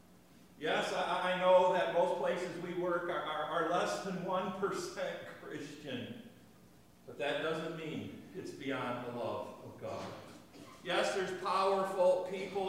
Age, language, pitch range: 50-69, English, 130-175 Hz